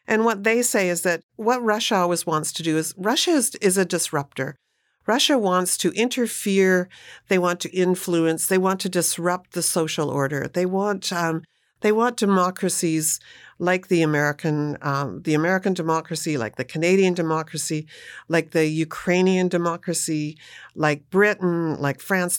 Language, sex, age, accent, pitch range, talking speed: English, female, 50-69, American, 150-195 Hz, 155 wpm